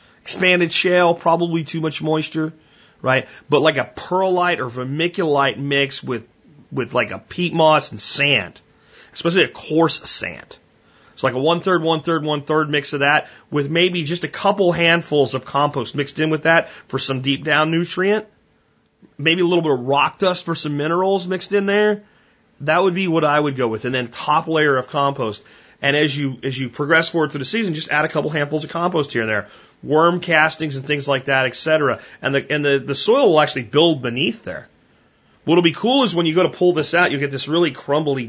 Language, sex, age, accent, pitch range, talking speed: French, male, 30-49, American, 135-170 Hz, 205 wpm